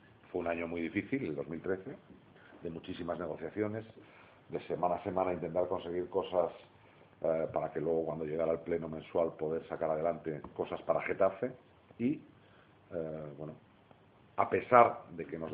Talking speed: 155 wpm